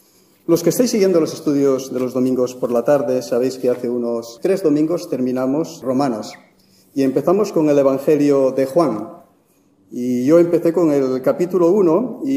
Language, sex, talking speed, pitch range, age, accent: English, male, 170 wpm, 130-165 Hz, 40-59, Spanish